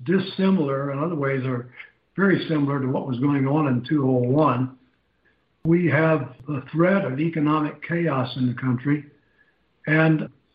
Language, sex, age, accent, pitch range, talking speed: English, male, 60-79, American, 135-165 Hz, 140 wpm